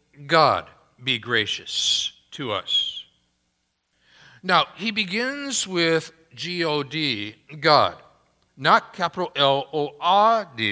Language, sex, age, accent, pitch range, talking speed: English, male, 60-79, American, 110-170 Hz, 80 wpm